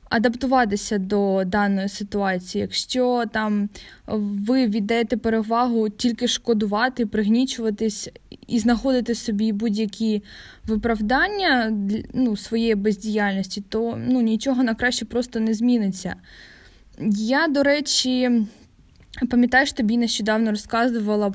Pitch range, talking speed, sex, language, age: 210-250 Hz, 100 wpm, female, Ukrainian, 10-29